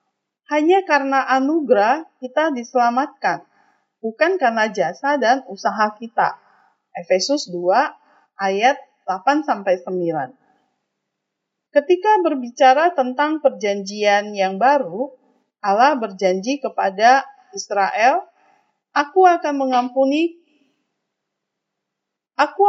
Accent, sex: native, female